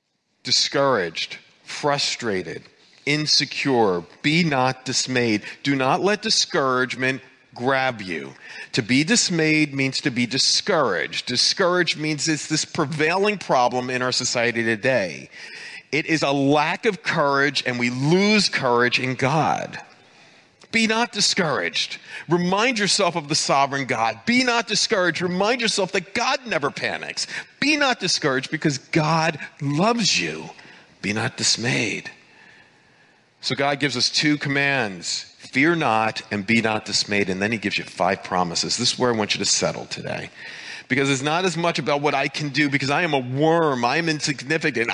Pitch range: 125-170 Hz